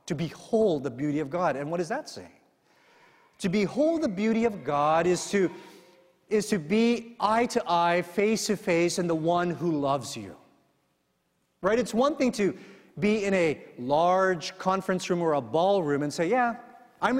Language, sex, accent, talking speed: English, male, American, 180 wpm